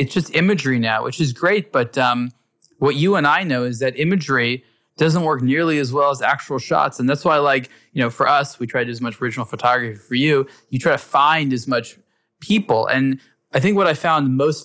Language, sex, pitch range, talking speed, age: English, male, 125-155 Hz, 235 wpm, 20-39